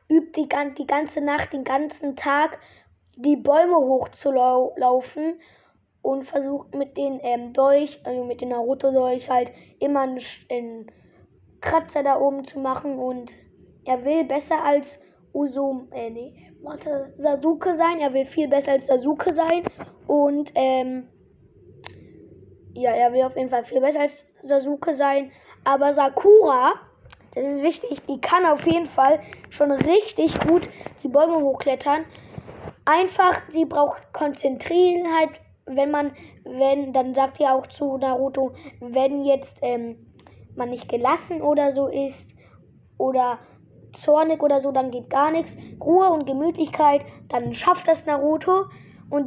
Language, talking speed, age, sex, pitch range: German, 140 wpm, 20-39, female, 265-310 Hz